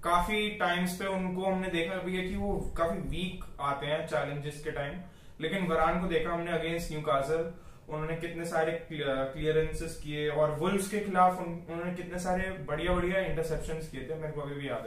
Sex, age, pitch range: male, 20-39, 145-175 Hz